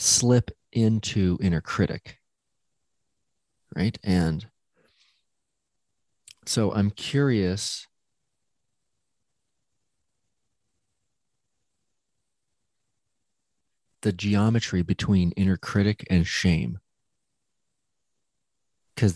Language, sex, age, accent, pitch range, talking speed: English, male, 30-49, American, 90-110 Hz, 55 wpm